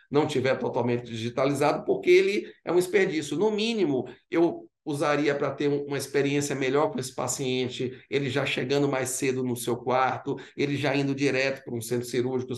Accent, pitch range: Brazilian, 125-215 Hz